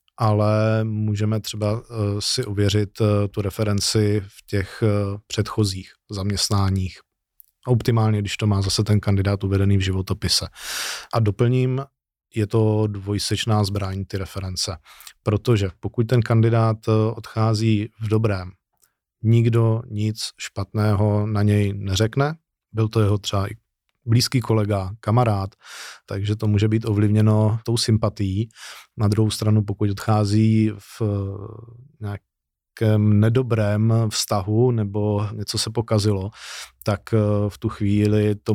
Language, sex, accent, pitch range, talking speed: Czech, male, native, 100-110 Hz, 120 wpm